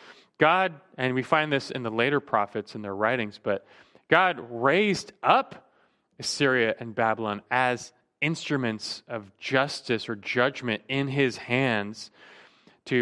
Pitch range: 115-150 Hz